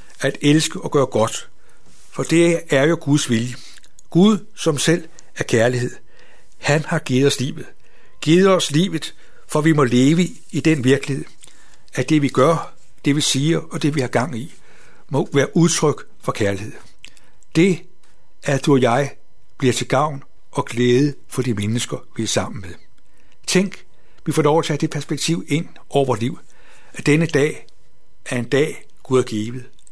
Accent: native